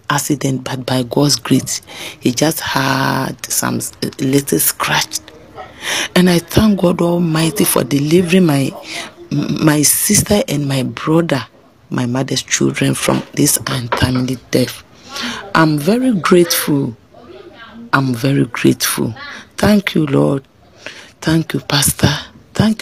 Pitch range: 125-175 Hz